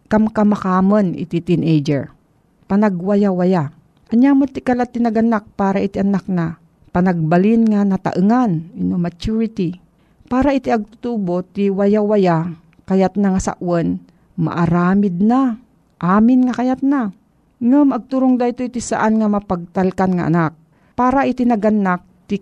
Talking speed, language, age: 120 wpm, Filipino, 50-69